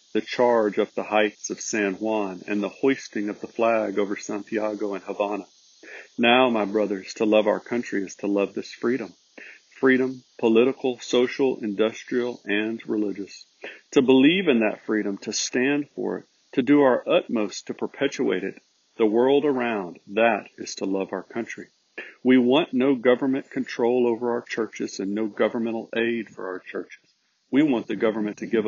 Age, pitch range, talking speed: 50-69, 100-120 Hz, 170 wpm